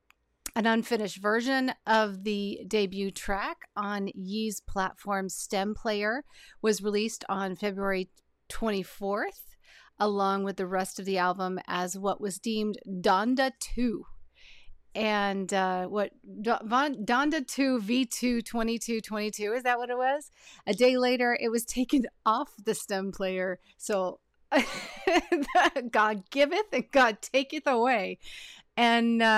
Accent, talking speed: American, 125 wpm